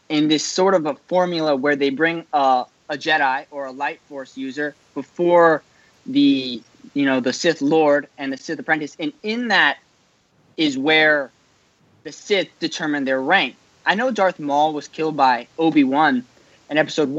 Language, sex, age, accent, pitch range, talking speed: English, male, 20-39, American, 140-180 Hz, 170 wpm